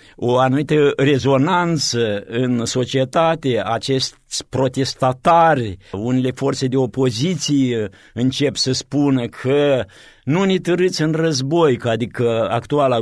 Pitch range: 110-150 Hz